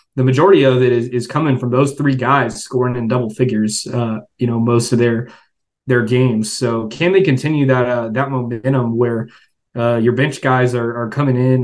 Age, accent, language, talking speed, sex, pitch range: 20-39, American, English, 205 wpm, male, 120-135 Hz